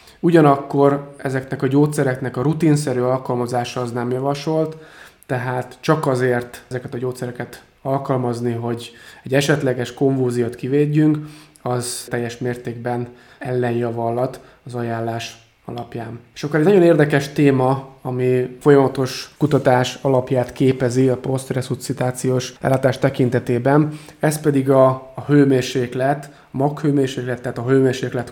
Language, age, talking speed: Hungarian, 20-39, 110 wpm